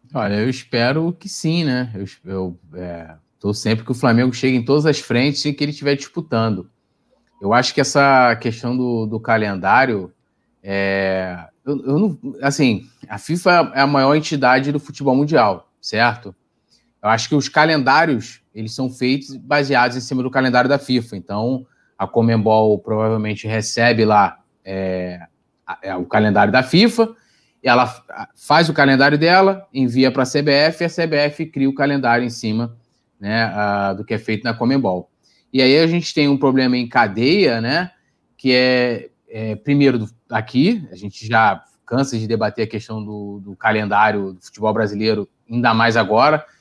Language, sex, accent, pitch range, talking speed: Portuguese, male, Brazilian, 110-140 Hz, 160 wpm